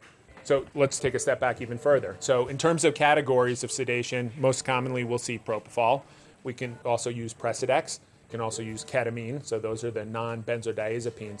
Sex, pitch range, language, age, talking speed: male, 110-130 Hz, English, 30-49, 185 wpm